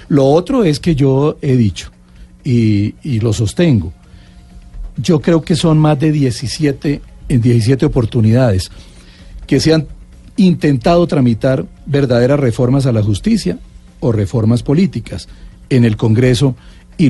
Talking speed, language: 135 wpm, Spanish